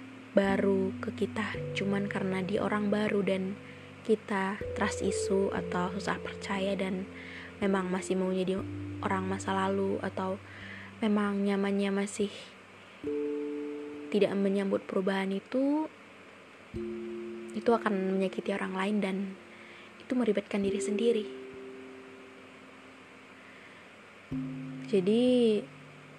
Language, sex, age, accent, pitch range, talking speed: Indonesian, female, 20-39, native, 125-210 Hz, 95 wpm